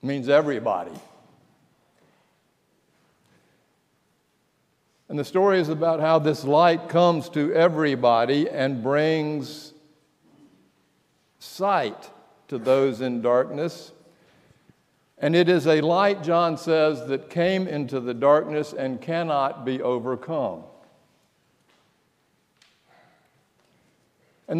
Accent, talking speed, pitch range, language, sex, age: American, 90 wpm, 135-165 Hz, English, male, 60-79